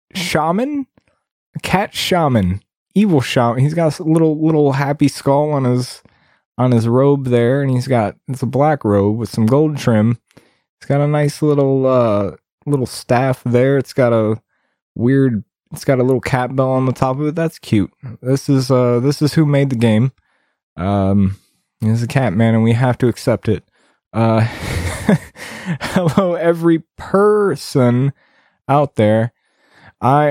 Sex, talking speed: male, 160 wpm